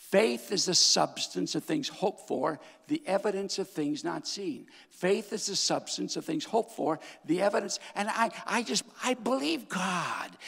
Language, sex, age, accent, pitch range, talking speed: English, male, 60-79, American, 170-240 Hz, 180 wpm